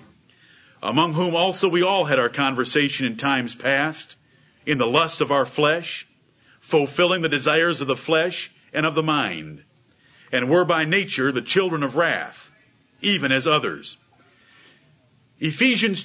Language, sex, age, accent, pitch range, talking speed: English, male, 50-69, American, 150-210 Hz, 145 wpm